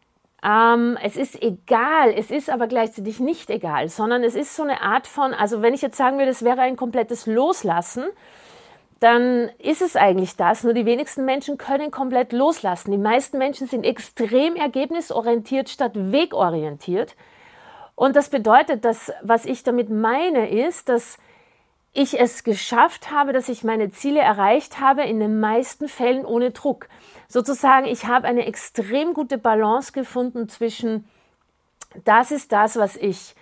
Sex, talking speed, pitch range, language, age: female, 160 wpm, 225-275 Hz, German, 50-69